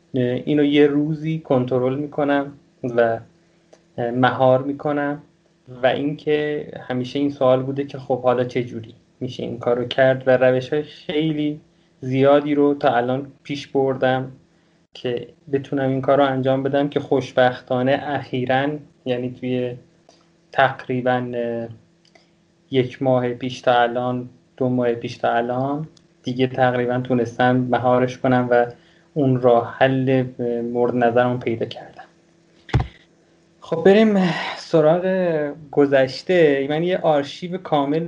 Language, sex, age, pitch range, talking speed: Persian, male, 20-39, 125-155 Hz, 120 wpm